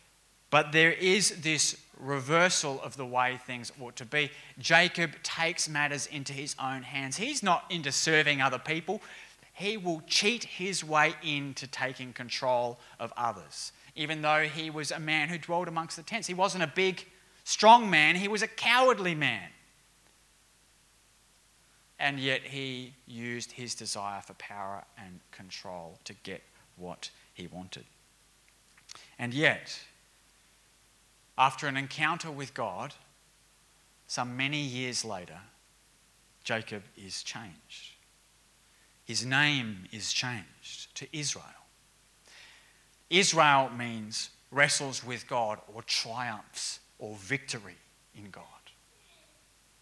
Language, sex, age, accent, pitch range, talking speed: English, male, 20-39, Australian, 130-170 Hz, 125 wpm